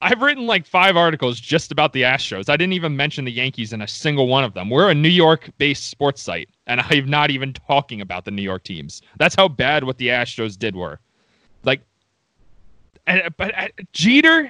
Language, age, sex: English, 30-49, male